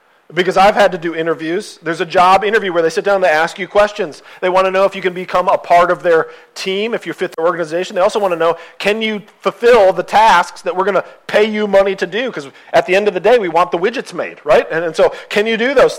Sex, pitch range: male, 160-220 Hz